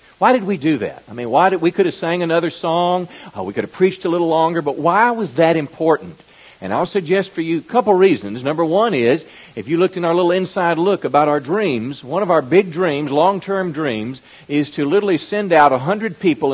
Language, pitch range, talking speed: English, 145-185 Hz, 235 wpm